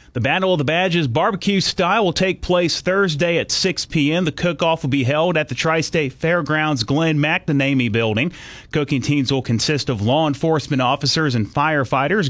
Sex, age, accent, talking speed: male, 30-49, American, 180 wpm